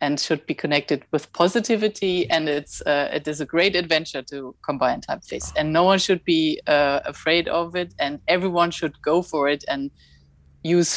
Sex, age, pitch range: female, 30-49, 145-185 Hz